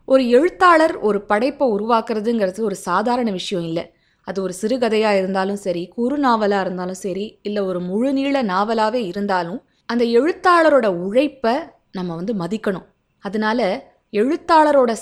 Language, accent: Tamil, native